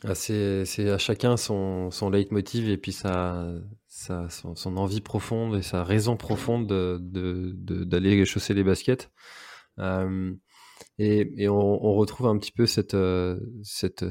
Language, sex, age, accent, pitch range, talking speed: French, male, 20-39, French, 90-105 Hz, 155 wpm